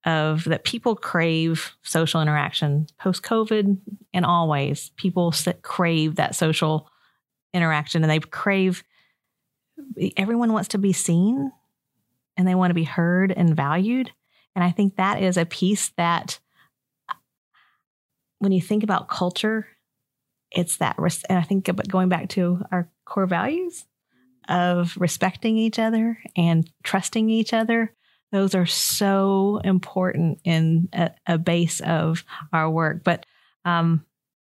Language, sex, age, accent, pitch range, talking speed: English, female, 40-59, American, 165-200 Hz, 140 wpm